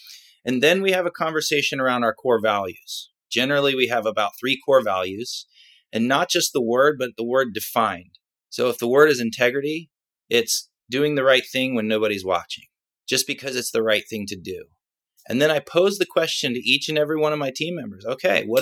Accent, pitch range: American, 120-180 Hz